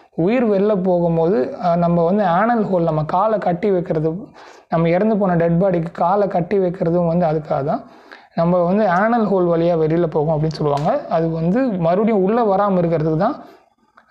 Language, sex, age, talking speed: Tamil, male, 30-49, 160 wpm